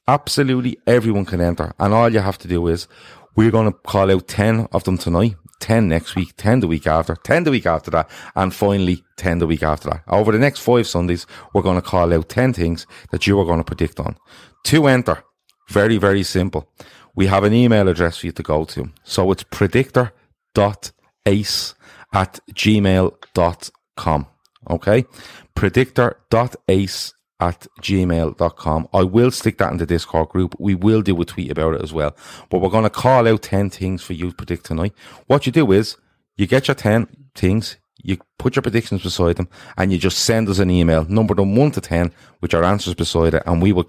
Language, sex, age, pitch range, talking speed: English, male, 30-49, 85-110 Hz, 200 wpm